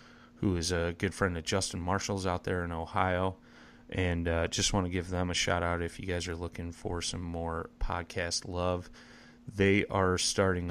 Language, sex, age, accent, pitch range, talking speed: English, male, 30-49, American, 85-95 Hz, 195 wpm